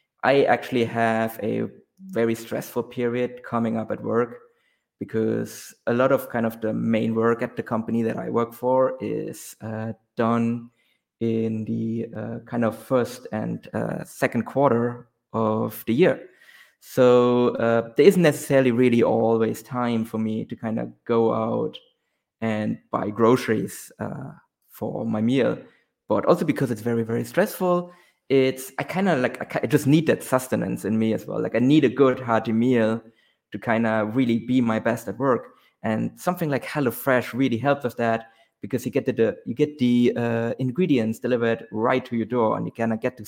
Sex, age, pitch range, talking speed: male, 20-39, 115-125 Hz, 180 wpm